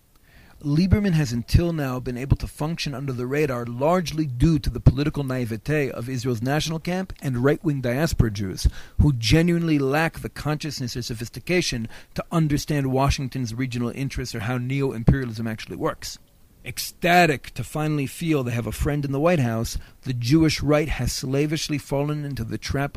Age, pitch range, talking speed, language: 40-59, 120-145 Hz, 165 wpm, English